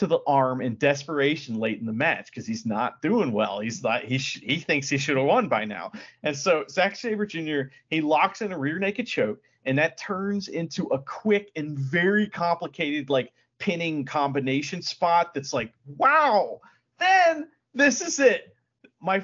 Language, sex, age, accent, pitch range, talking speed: English, male, 40-59, American, 145-215 Hz, 180 wpm